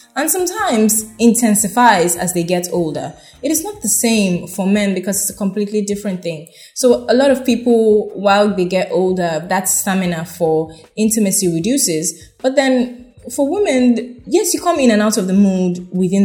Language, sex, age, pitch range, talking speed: English, female, 20-39, 175-220 Hz, 175 wpm